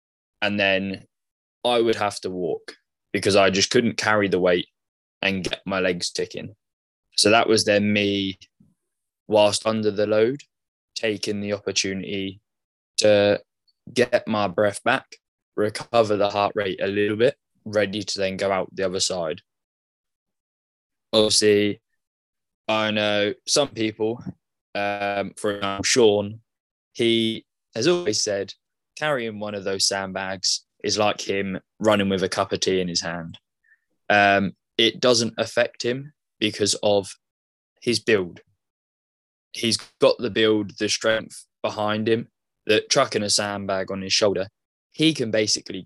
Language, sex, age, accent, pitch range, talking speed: English, male, 10-29, British, 95-110 Hz, 140 wpm